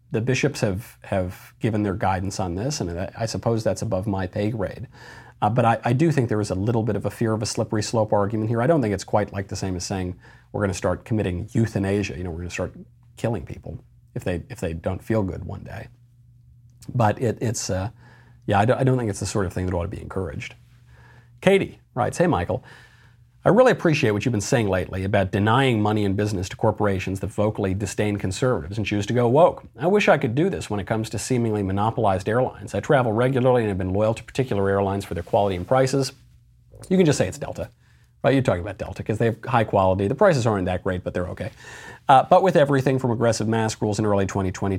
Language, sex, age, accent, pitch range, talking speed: English, male, 40-59, American, 100-120 Hz, 245 wpm